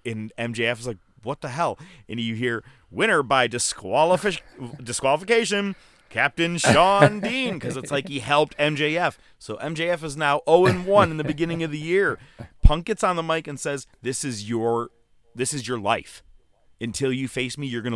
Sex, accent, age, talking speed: male, American, 30-49, 180 wpm